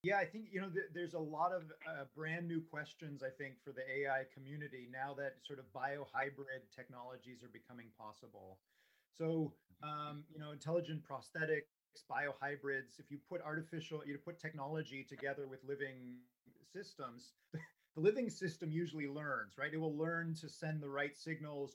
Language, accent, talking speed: English, American, 170 wpm